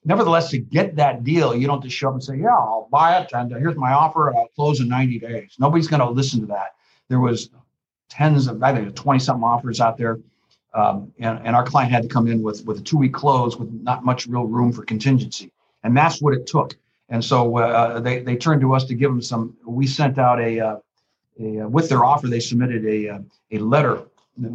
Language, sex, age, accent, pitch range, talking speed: English, male, 50-69, American, 115-140 Hz, 225 wpm